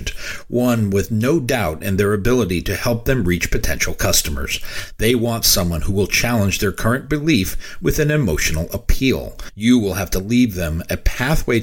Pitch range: 90-125 Hz